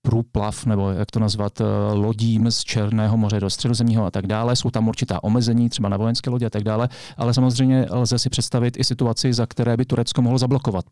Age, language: 40-59, Czech